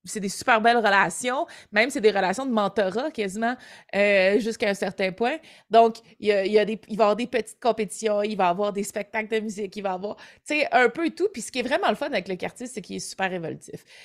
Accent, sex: Canadian, female